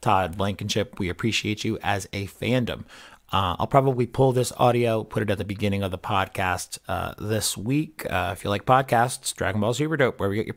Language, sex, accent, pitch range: English, male, American, 95-125 Hz